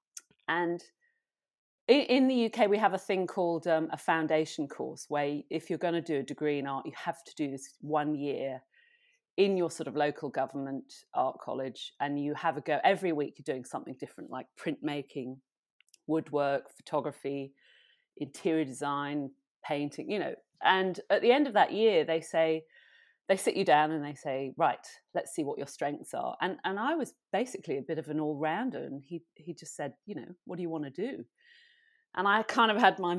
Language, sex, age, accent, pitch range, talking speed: English, female, 40-59, British, 145-185 Hz, 200 wpm